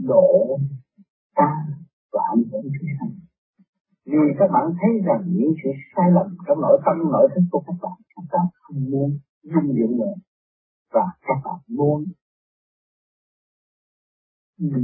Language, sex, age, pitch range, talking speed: Vietnamese, male, 50-69, 150-245 Hz, 140 wpm